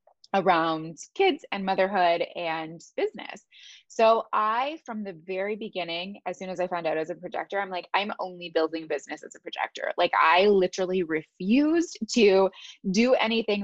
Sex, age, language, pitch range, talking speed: female, 20-39, English, 170-210 Hz, 165 wpm